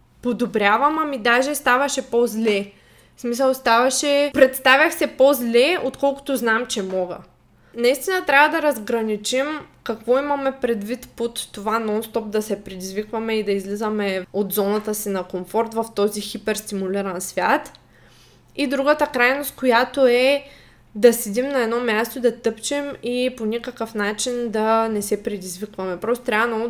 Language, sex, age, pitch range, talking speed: Bulgarian, female, 20-39, 215-255 Hz, 140 wpm